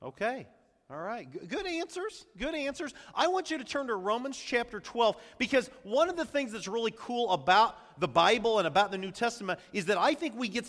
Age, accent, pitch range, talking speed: 40-59, American, 165-225 Hz, 220 wpm